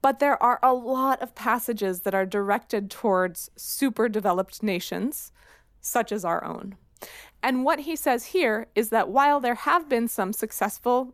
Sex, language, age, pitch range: female, English, 20-39, 195-255 Hz